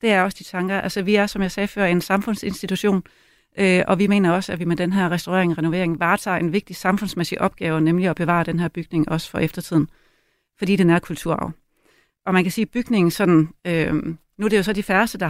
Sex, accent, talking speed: female, native, 240 wpm